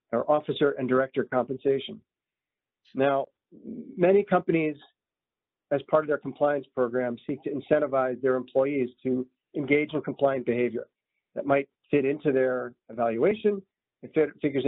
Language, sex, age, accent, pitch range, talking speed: English, male, 40-59, American, 135-170 Hz, 130 wpm